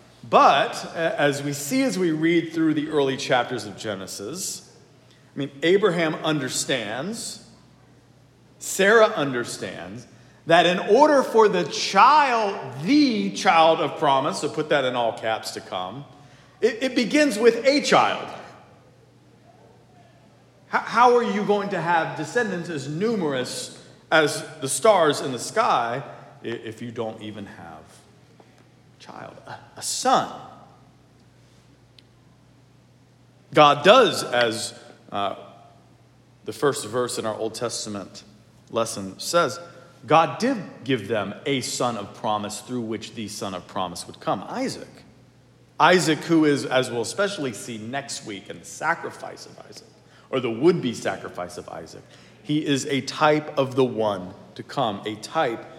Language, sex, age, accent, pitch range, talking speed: English, male, 40-59, American, 120-170 Hz, 140 wpm